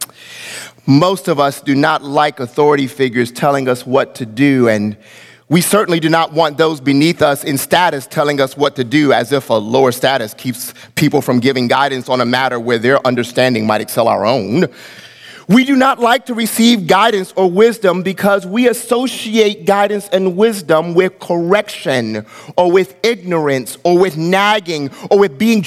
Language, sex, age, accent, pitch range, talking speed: English, male, 30-49, American, 140-210 Hz, 175 wpm